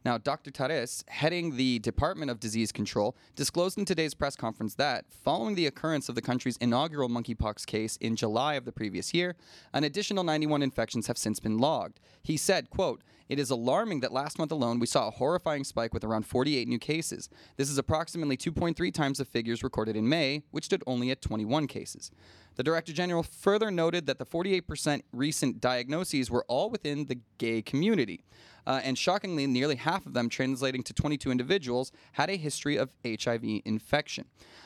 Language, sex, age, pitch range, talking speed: English, male, 30-49, 120-155 Hz, 185 wpm